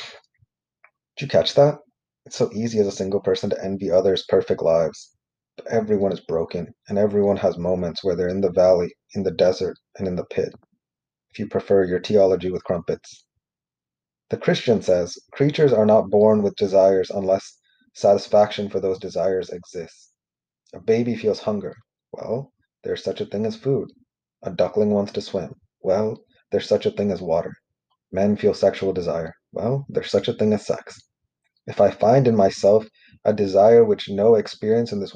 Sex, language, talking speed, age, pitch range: male, English, 175 wpm, 30-49, 95-115 Hz